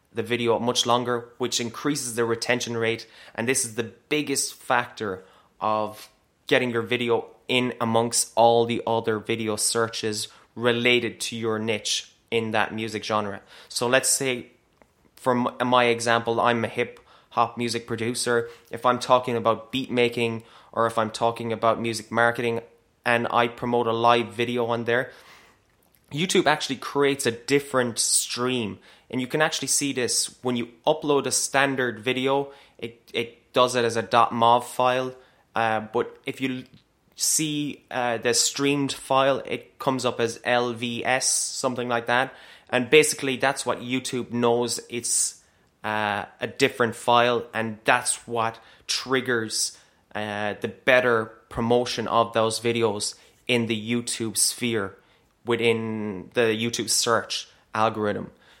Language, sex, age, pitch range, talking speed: English, male, 20-39, 115-125 Hz, 145 wpm